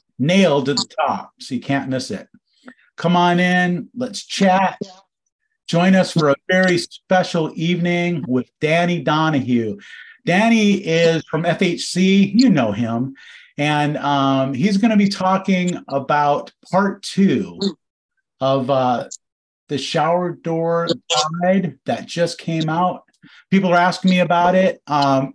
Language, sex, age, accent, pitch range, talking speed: English, male, 40-59, American, 135-190 Hz, 135 wpm